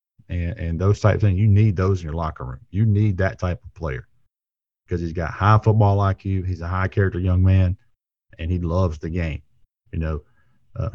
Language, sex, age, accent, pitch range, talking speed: English, male, 40-59, American, 90-105 Hz, 210 wpm